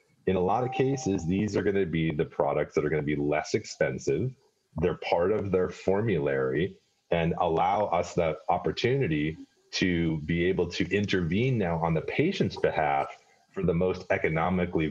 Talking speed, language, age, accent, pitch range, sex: 165 wpm, English, 30-49, American, 80-110 Hz, male